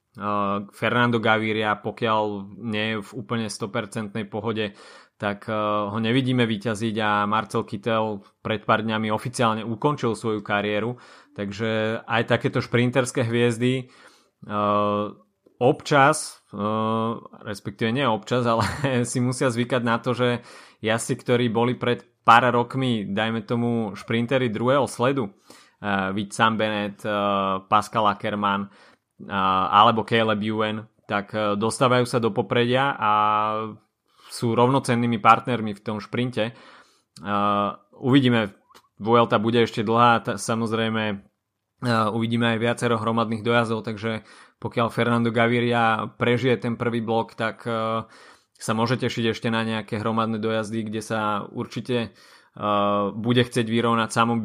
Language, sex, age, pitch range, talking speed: Slovak, male, 20-39, 105-120 Hz, 115 wpm